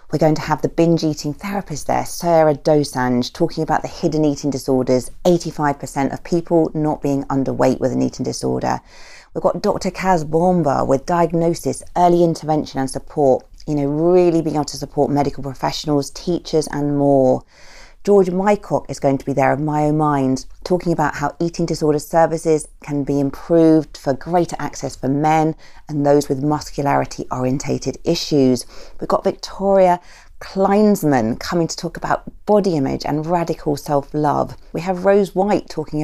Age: 40-59